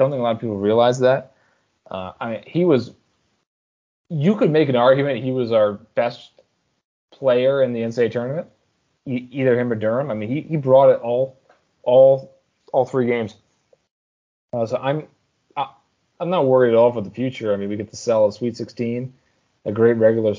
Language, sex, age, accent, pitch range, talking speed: English, male, 20-39, American, 110-130 Hz, 195 wpm